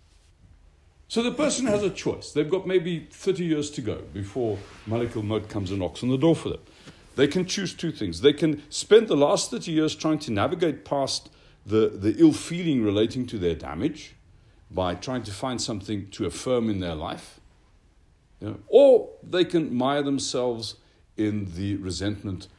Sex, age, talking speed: male, 60-79, 180 wpm